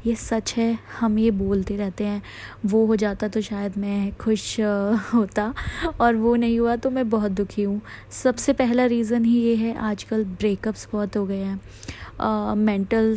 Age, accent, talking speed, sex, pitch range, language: 20-39, native, 180 wpm, female, 205-230 Hz, Hindi